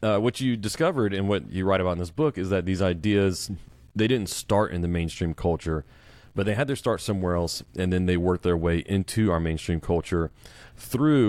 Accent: American